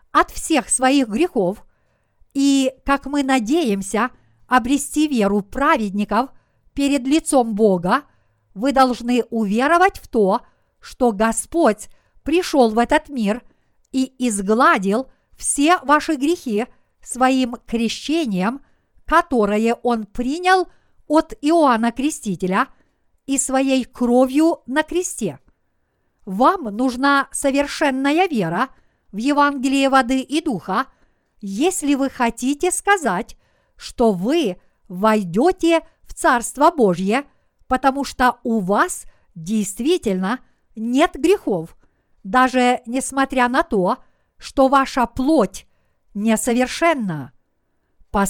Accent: native